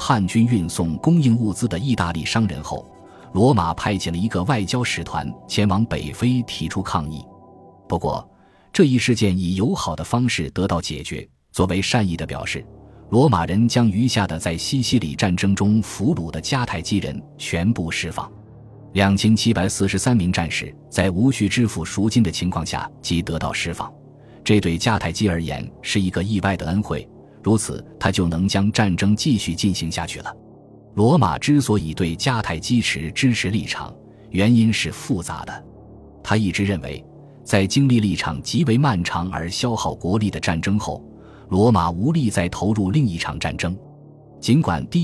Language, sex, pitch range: Chinese, male, 85-115 Hz